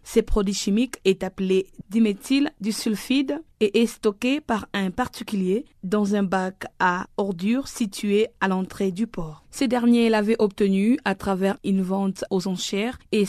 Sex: female